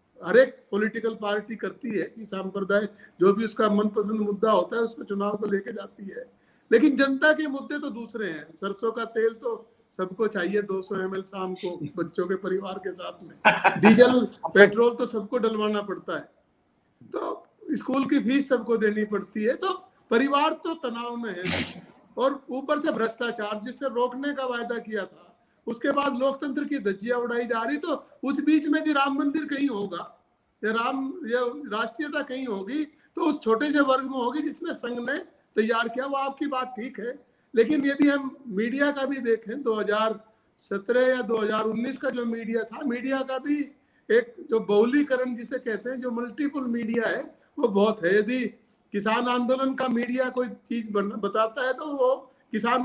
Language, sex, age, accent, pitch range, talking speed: Hindi, male, 50-69, native, 215-275 Hz, 140 wpm